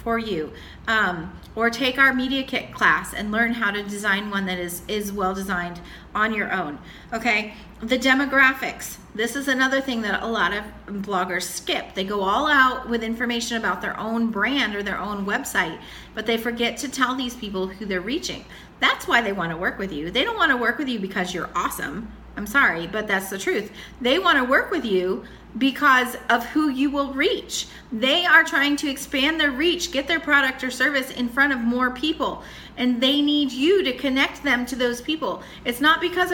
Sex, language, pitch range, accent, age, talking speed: female, English, 220-285 Hz, American, 40-59, 205 wpm